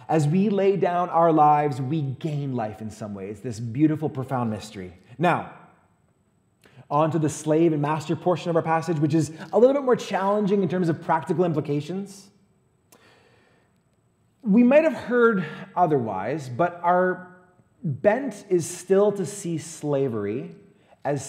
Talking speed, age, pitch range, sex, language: 150 wpm, 30-49, 130-185 Hz, male, English